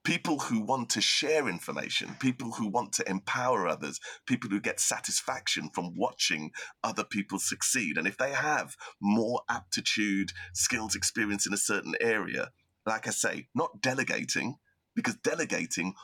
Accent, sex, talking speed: British, male, 150 wpm